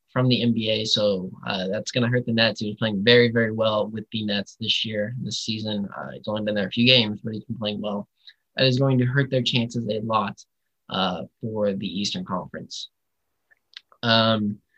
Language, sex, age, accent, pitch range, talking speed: English, male, 20-39, American, 110-135 Hz, 210 wpm